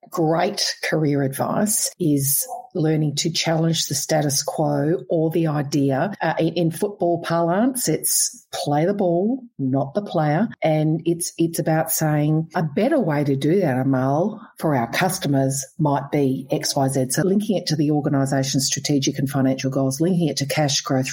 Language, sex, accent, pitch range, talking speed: English, female, Australian, 140-170 Hz, 170 wpm